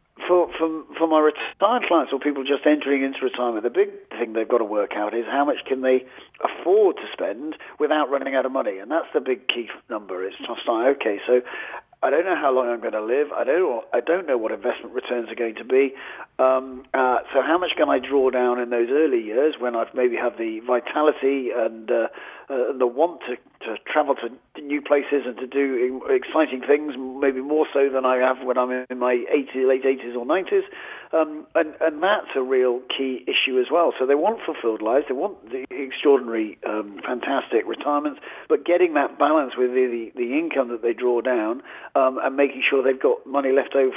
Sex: male